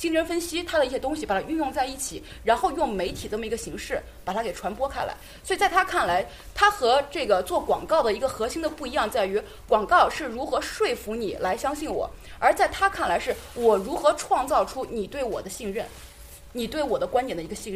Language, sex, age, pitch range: Chinese, female, 20-39, 225-335 Hz